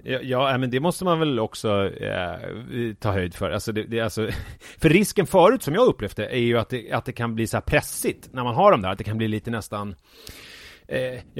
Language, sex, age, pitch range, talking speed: English, male, 30-49, 110-145 Hz, 230 wpm